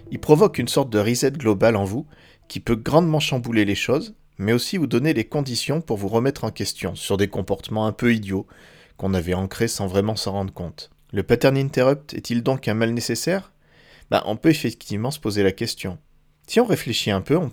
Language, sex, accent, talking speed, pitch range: French, male, French, 210 wpm, 100-130 Hz